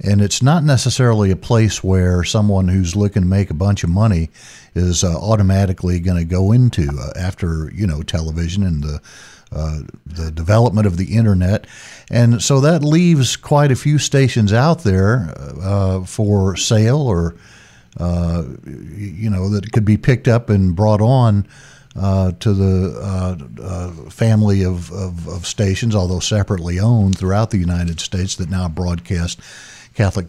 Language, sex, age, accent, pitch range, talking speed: English, male, 50-69, American, 90-115 Hz, 160 wpm